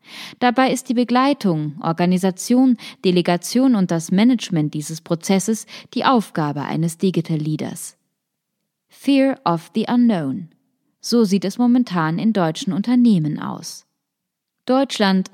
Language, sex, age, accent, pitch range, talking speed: German, female, 20-39, German, 175-230 Hz, 115 wpm